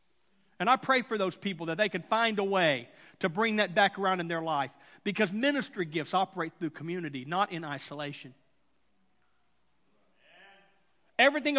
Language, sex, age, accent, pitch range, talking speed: English, male, 40-59, American, 195-260 Hz, 155 wpm